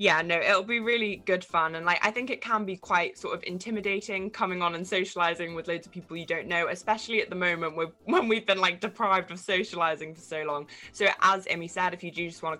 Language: English